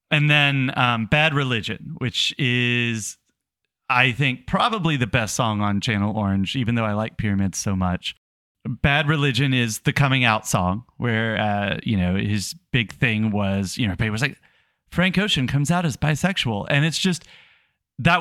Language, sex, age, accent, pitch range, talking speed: English, male, 30-49, American, 115-145 Hz, 175 wpm